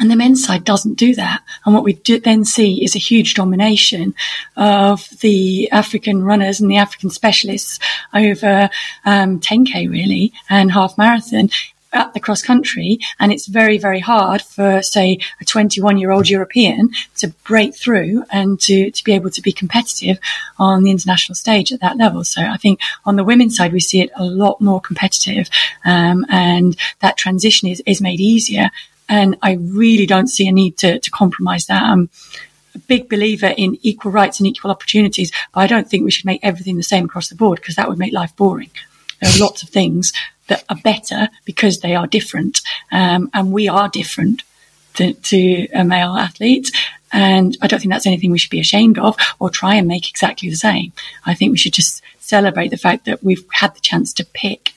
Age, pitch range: 30-49, 190-220 Hz